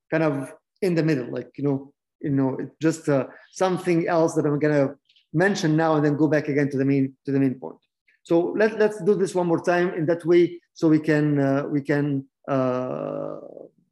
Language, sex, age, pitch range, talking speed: English, male, 50-69, 145-210 Hz, 205 wpm